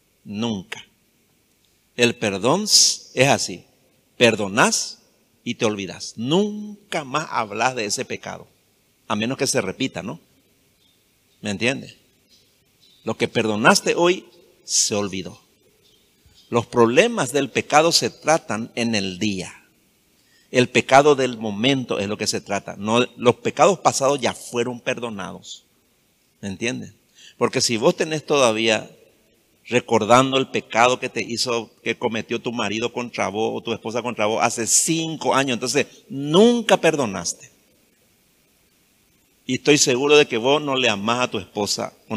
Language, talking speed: Spanish, 140 wpm